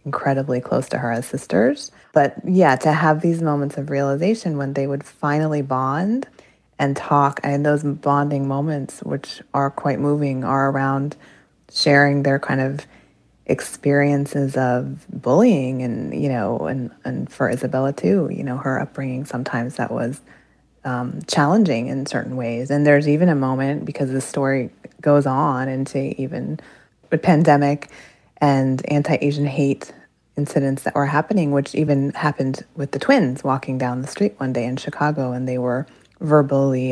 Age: 20-39